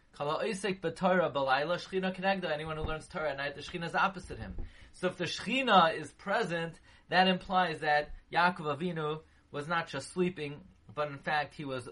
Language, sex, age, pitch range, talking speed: English, male, 30-49, 140-185 Hz, 185 wpm